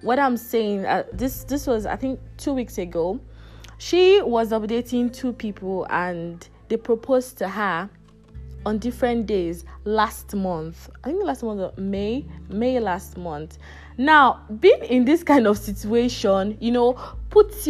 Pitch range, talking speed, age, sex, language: 200-260 Hz, 155 wpm, 20-39, female, English